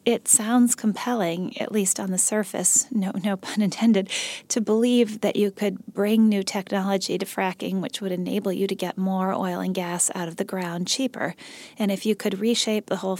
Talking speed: 200 wpm